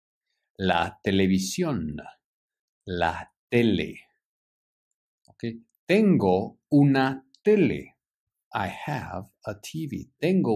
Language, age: English, 50-69